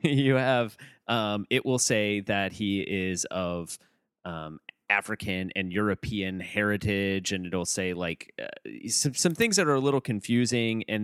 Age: 30-49